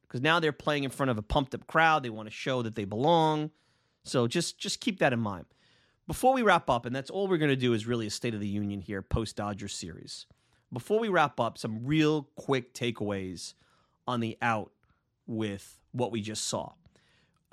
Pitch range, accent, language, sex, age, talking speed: 110-150 Hz, American, English, male, 30-49, 210 wpm